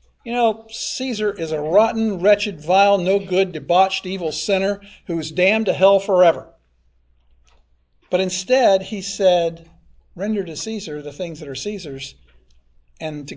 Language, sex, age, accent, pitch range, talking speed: English, male, 50-69, American, 155-210 Hz, 150 wpm